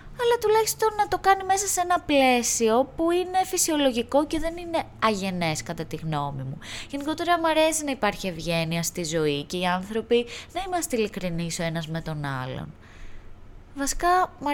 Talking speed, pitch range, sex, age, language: 170 wpm, 145-240 Hz, female, 20-39, Greek